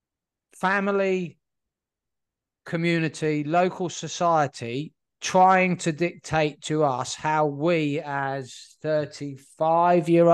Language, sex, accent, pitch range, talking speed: English, male, British, 140-180 Hz, 80 wpm